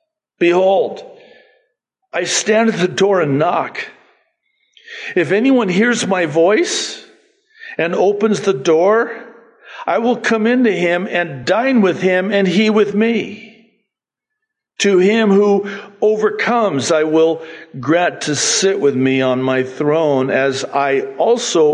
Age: 50-69